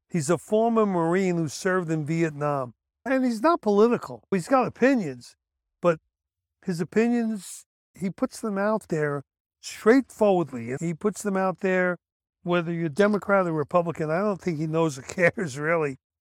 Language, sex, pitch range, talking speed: English, male, 160-220 Hz, 155 wpm